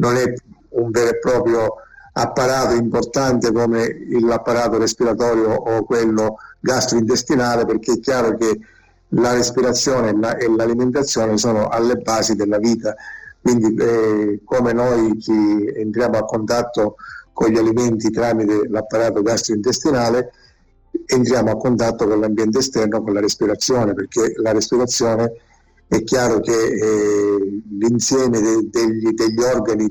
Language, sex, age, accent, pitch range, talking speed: Italian, male, 50-69, native, 110-125 Hz, 120 wpm